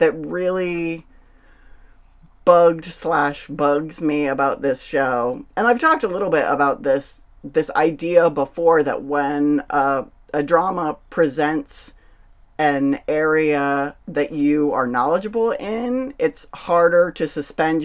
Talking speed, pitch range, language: 125 wpm, 140-170 Hz, English